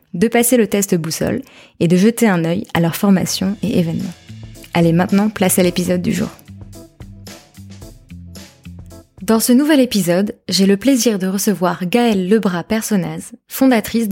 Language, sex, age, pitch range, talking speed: French, female, 20-39, 185-230 Hz, 150 wpm